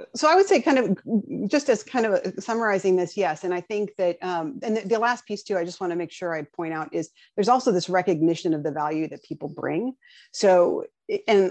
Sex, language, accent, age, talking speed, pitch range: female, English, American, 40-59, 240 wpm, 165-220 Hz